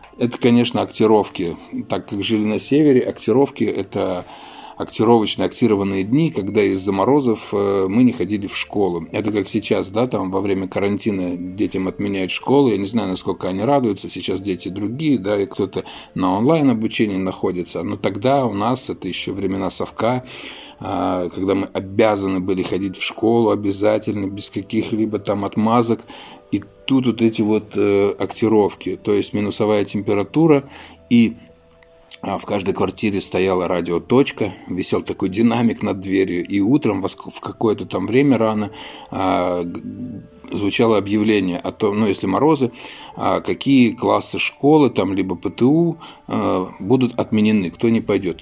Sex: male